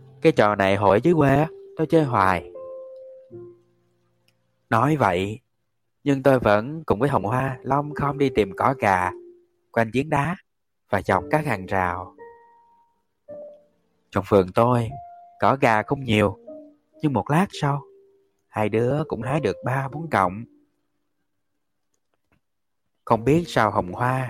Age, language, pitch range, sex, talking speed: 20-39, Vietnamese, 100-165 Hz, male, 140 wpm